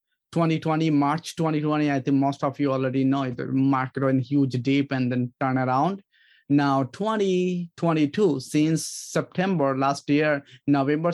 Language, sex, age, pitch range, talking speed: English, male, 20-39, 140-165 Hz, 140 wpm